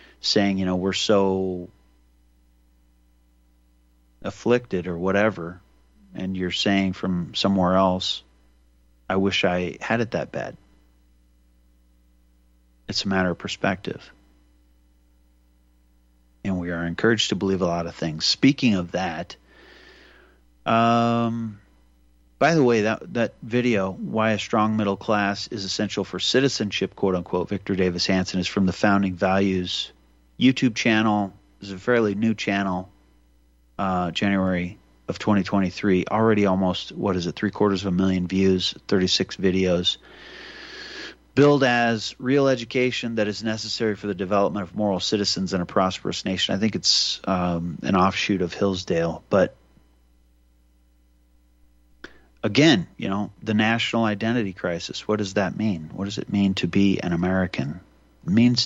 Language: English